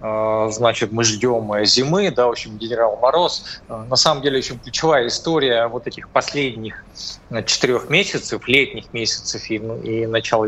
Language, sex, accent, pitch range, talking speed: Russian, male, native, 110-140 Hz, 145 wpm